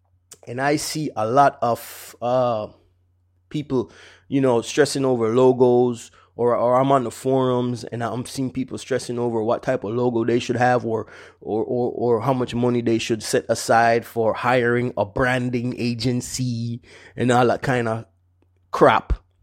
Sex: male